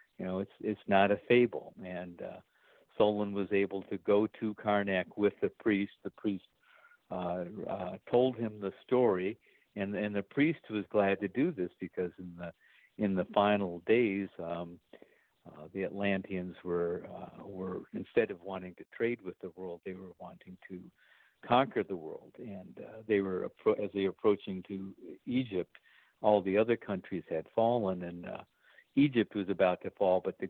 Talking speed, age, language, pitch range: 175 wpm, 60-79, English, 90-105 Hz